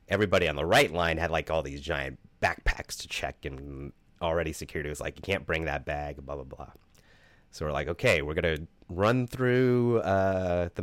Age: 30-49